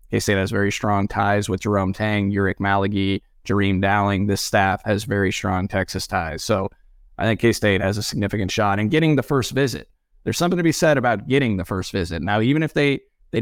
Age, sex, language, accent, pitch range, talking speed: 20-39, male, English, American, 95-115 Hz, 210 wpm